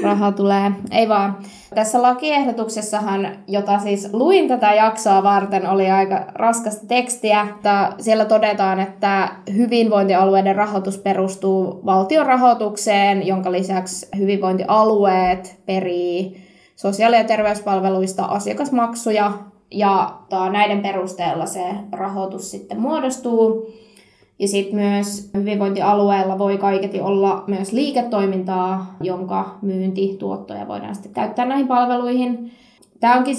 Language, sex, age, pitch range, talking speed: Finnish, female, 20-39, 195-220 Hz, 105 wpm